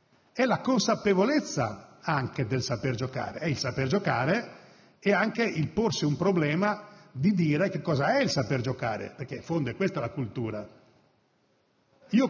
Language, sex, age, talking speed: Italian, male, 50-69, 160 wpm